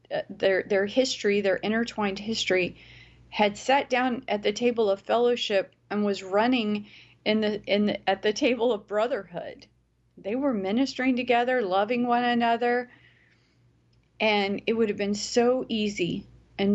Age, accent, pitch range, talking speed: 30-49, American, 185-235 Hz, 145 wpm